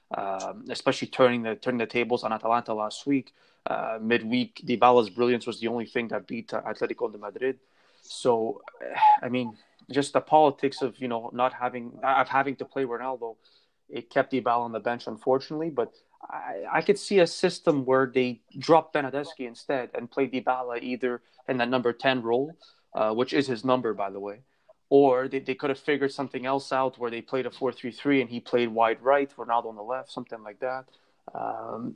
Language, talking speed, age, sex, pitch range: English, 195 wpm, 20-39, male, 120-145 Hz